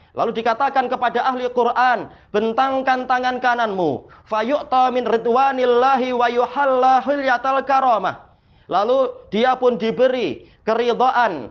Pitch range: 225-255 Hz